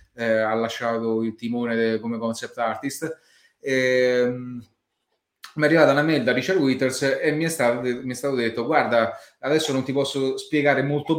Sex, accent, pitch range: male, native, 125-165 Hz